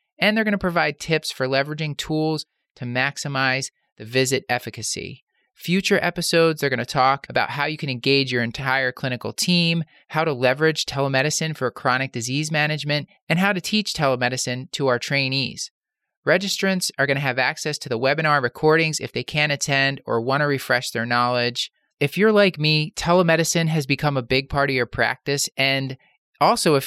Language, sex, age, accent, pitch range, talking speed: English, male, 30-49, American, 130-170 Hz, 180 wpm